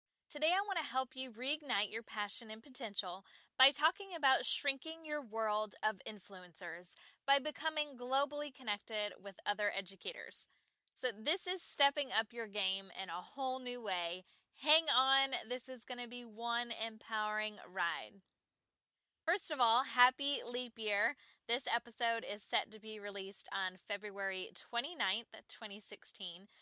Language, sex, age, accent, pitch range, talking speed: English, female, 10-29, American, 200-265 Hz, 145 wpm